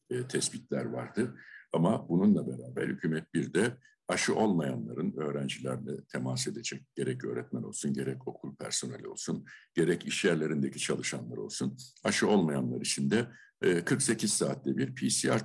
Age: 60-79